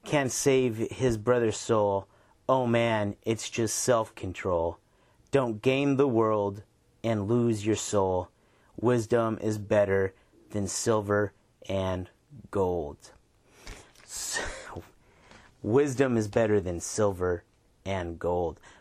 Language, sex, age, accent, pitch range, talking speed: English, male, 30-49, American, 100-125 Hz, 105 wpm